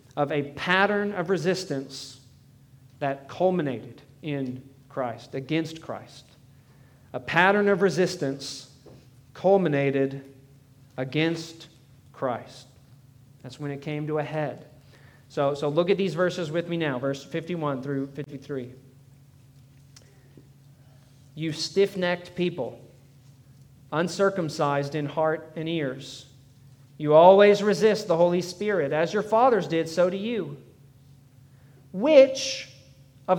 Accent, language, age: American, English, 40-59